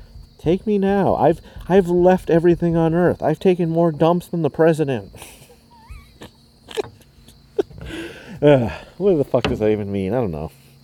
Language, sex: English, male